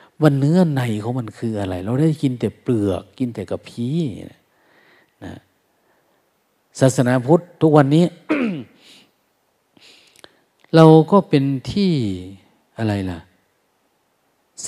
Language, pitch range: Thai, 105-145 Hz